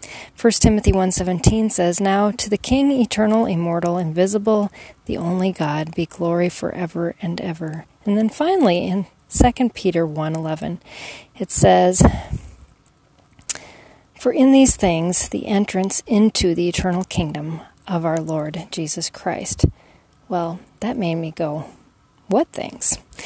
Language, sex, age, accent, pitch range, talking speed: English, female, 40-59, American, 170-215 Hz, 135 wpm